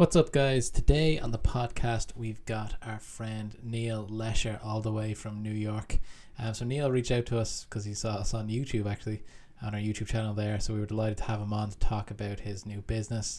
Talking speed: 235 wpm